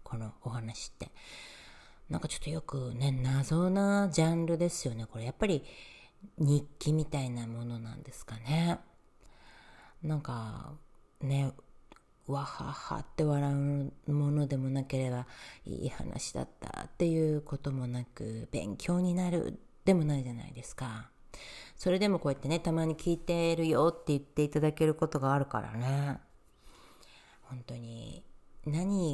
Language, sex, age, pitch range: Japanese, female, 40-59, 125-160 Hz